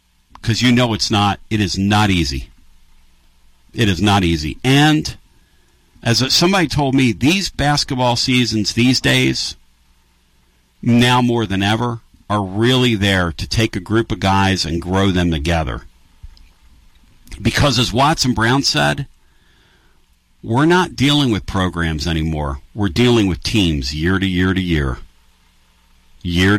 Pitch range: 70-115 Hz